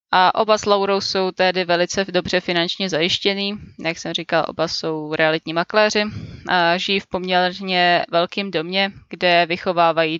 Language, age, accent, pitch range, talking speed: Czech, 20-39, native, 175-205 Hz, 145 wpm